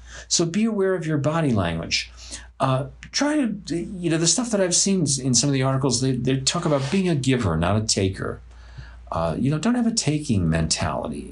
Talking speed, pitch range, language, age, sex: 210 wpm, 90-145 Hz, English, 50-69, male